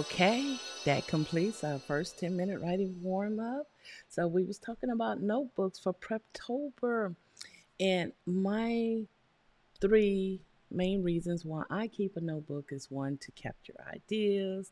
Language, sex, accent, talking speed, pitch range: English, female, American, 125 wpm, 160-205 Hz